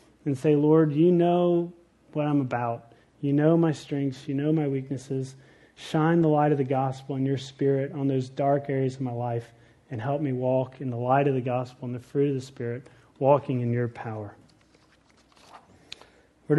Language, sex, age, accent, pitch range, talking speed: English, male, 30-49, American, 135-170 Hz, 190 wpm